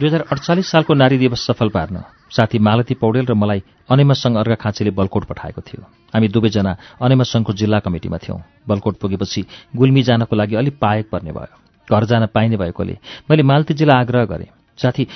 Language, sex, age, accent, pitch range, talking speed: English, male, 40-59, Indian, 105-135 Hz, 135 wpm